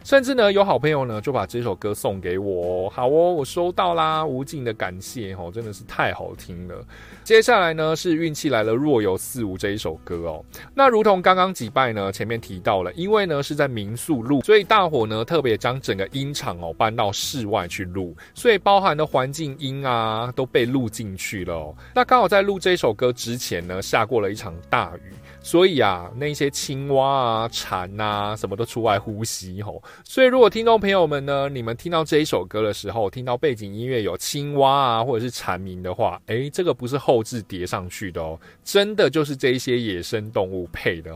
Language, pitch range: Chinese, 100-150 Hz